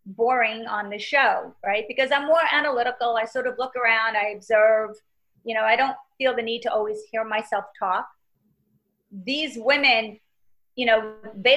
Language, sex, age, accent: English, female, 30-49, American